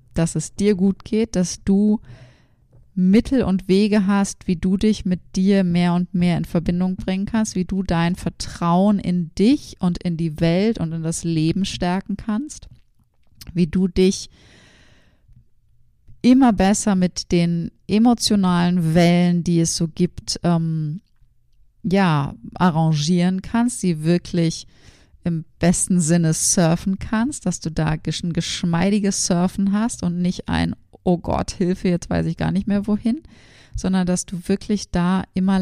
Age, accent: 30-49, German